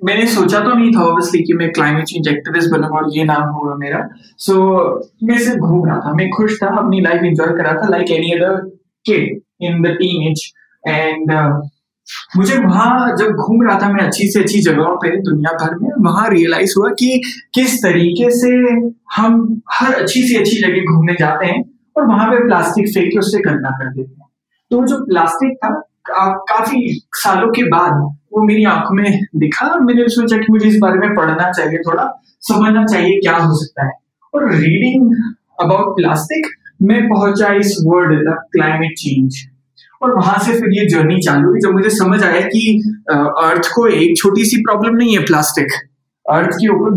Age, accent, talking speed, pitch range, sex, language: 20-39, native, 130 wpm, 165-225 Hz, male, Hindi